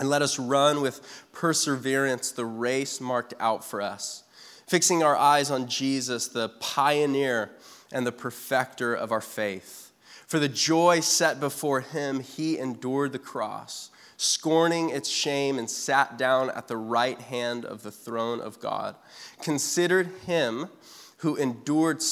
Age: 20-39